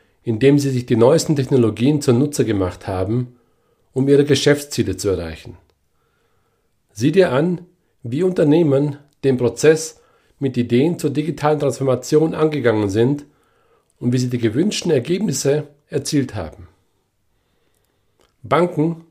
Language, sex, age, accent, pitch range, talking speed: German, male, 40-59, German, 120-150 Hz, 120 wpm